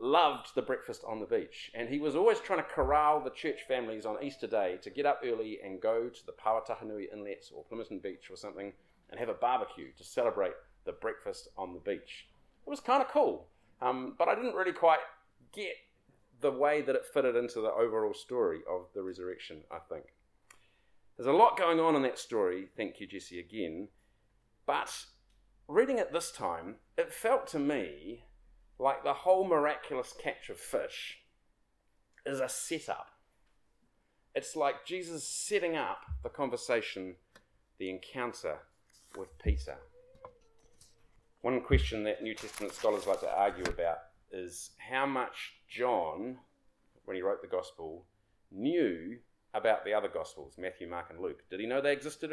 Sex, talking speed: male, 165 wpm